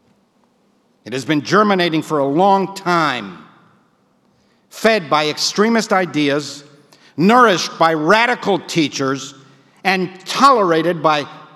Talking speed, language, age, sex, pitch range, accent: 100 wpm, English, 60-79, male, 175-245 Hz, American